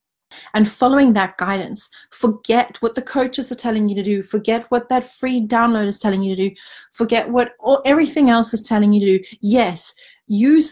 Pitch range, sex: 210-255 Hz, female